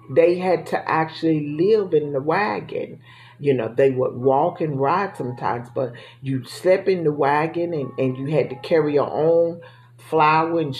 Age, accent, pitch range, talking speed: 40-59, American, 130-160 Hz, 180 wpm